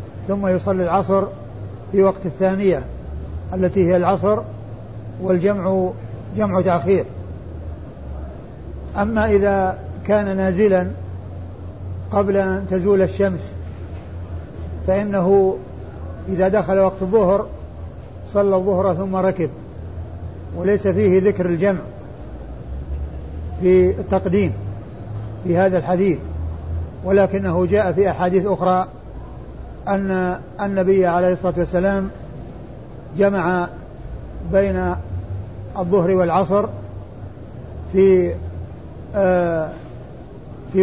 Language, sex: Arabic, male